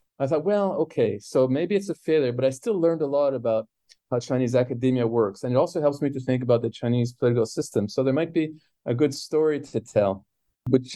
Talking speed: 230 wpm